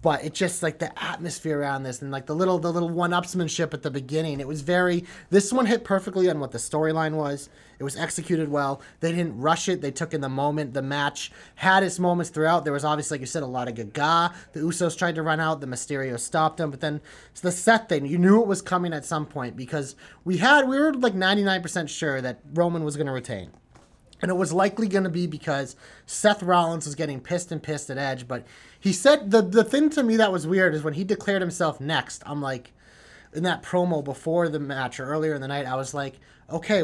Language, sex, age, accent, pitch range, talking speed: English, male, 30-49, American, 140-185 Hz, 240 wpm